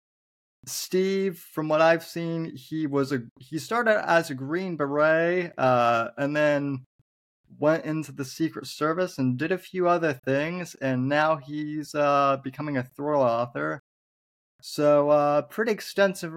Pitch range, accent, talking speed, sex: 130-165 Hz, American, 150 wpm, male